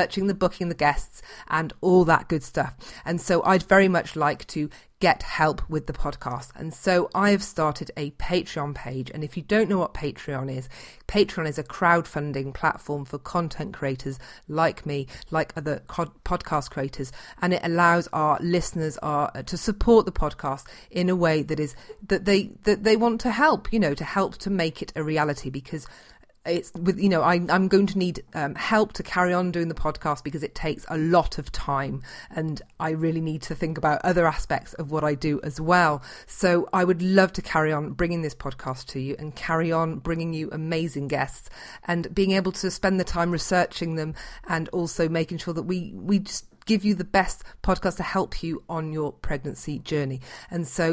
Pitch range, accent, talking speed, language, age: 150-180 Hz, British, 205 wpm, English, 40-59